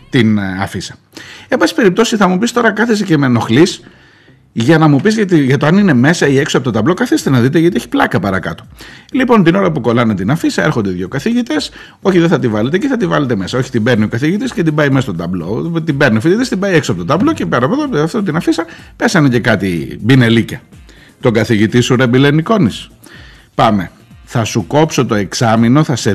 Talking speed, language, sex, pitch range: 230 wpm, Greek, male, 110-170 Hz